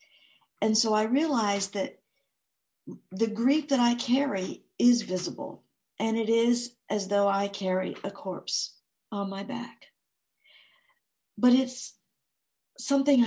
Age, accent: 50-69, American